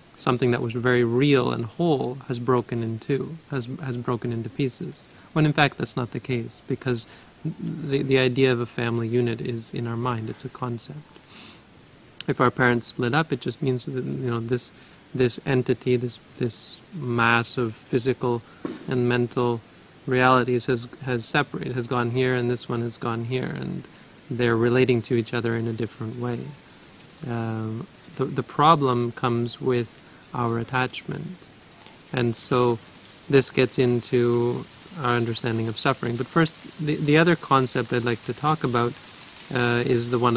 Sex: male